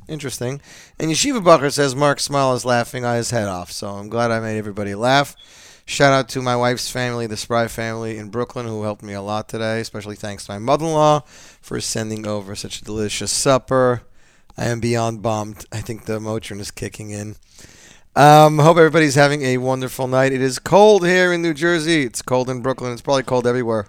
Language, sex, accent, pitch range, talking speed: English, male, American, 110-145 Hz, 205 wpm